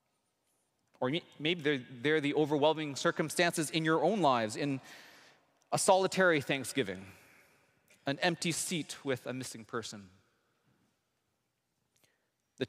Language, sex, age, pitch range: English, male, 30-49, 135-175 Hz